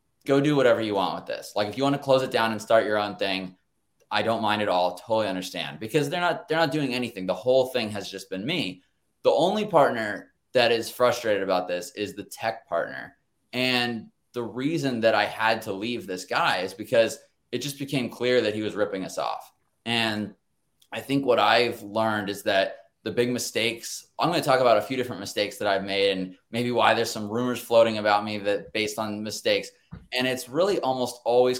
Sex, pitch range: male, 105-130 Hz